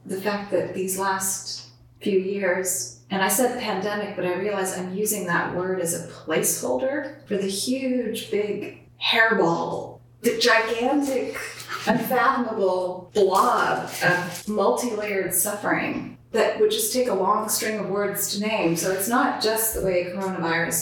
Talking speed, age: 150 wpm, 30-49